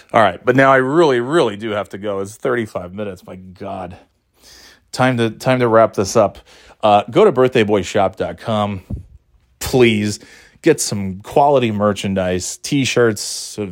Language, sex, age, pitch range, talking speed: English, male, 30-49, 105-130 Hz, 145 wpm